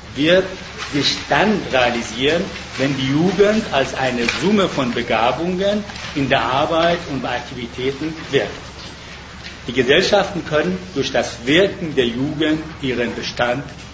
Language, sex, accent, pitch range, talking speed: English, male, German, 125-165 Hz, 125 wpm